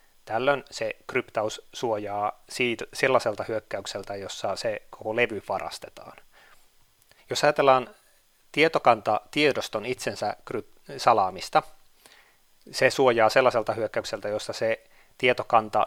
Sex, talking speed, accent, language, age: male, 90 wpm, native, Finnish, 30-49